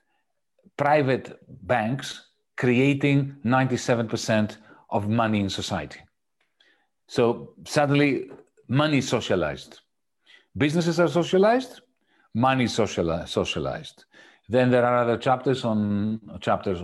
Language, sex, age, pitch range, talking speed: Slovak, male, 40-59, 105-130 Hz, 85 wpm